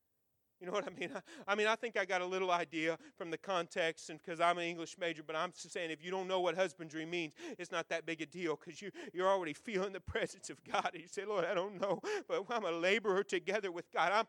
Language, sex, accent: English, male, American